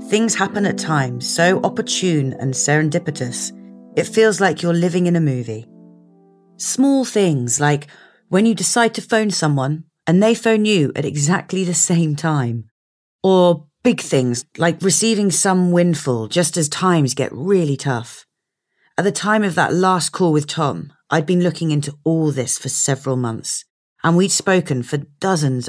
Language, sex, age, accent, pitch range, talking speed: English, female, 30-49, British, 135-195 Hz, 165 wpm